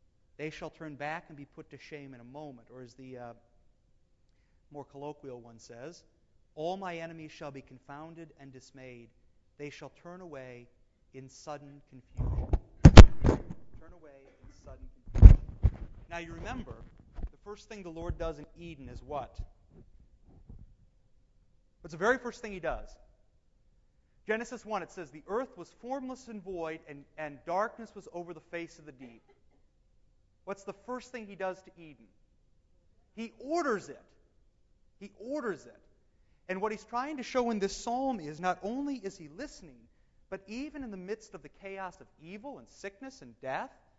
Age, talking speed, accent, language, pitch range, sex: 40-59, 170 wpm, American, English, 130-195 Hz, male